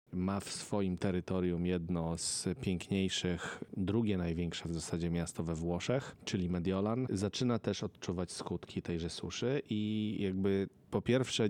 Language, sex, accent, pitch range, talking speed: Polish, male, native, 85-100 Hz, 135 wpm